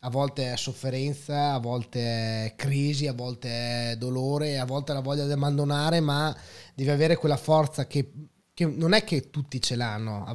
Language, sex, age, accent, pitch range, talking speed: Italian, male, 20-39, native, 115-155 Hz, 190 wpm